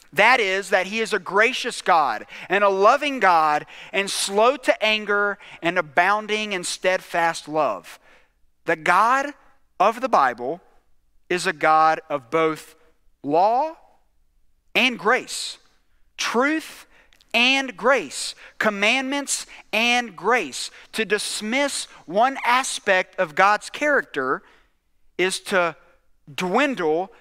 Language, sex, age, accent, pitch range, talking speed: English, male, 40-59, American, 180-245 Hz, 110 wpm